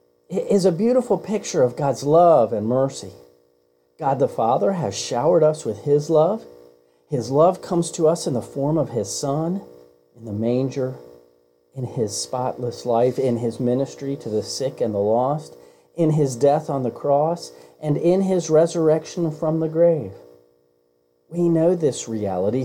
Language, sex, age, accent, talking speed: English, male, 40-59, American, 165 wpm